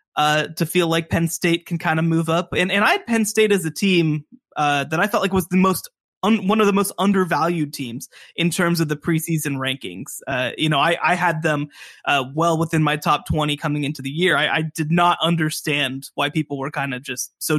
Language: English